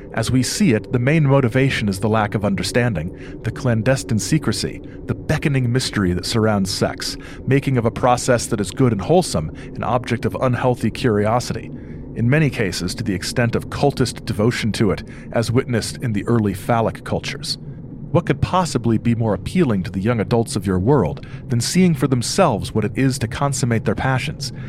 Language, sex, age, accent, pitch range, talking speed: English, male, 40-59, American, 100-130 Hz, 185 wpm